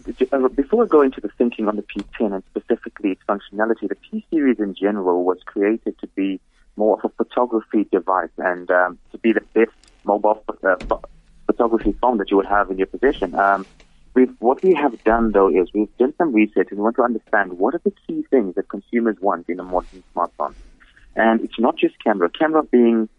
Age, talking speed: 30-49, 205 wpm